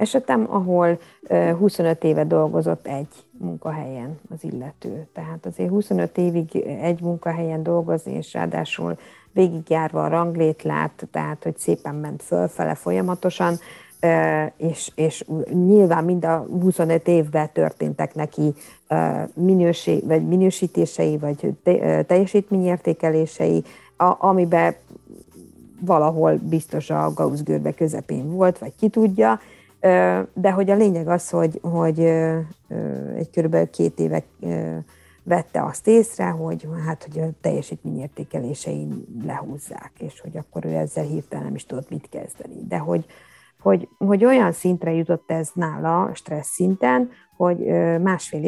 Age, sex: 50-69, female